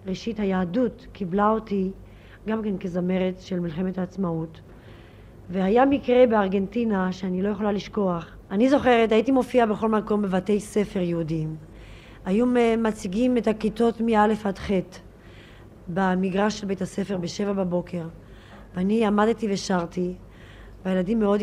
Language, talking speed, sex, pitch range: Hebrew, 125 wpm, female, 180-215 Hz